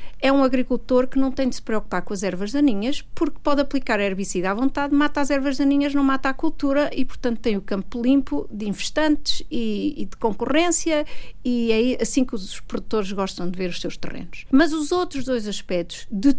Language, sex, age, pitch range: Portuguese, female, 50-69, 205-275 Hz